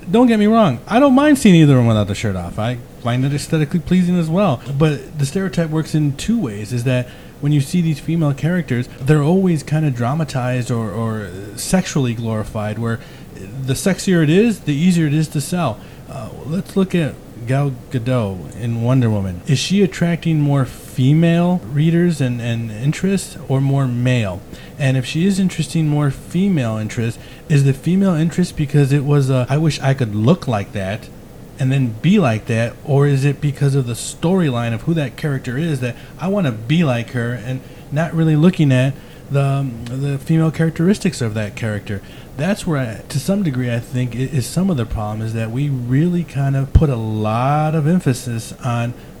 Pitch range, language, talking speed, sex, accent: 120-160 Hz, English, 195 wpm, male, American